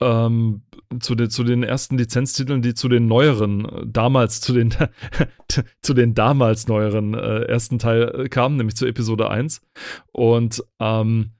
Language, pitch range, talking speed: German, 115-130 Hz, 155 wpm